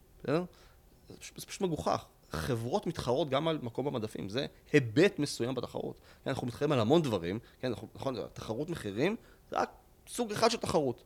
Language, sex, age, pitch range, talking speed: English, male, 30-49, 105-155 Hz, 150 wpm